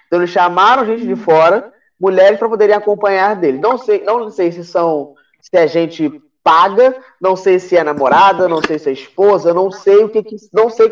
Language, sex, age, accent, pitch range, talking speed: Portuguese, male, 20-39, Brazilian, 180-245 Hz, 210 wpm